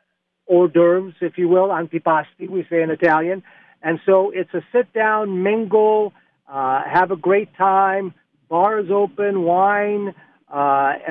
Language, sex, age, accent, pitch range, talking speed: English, male, 50-69, American, 150-195 Hz, 130 wpm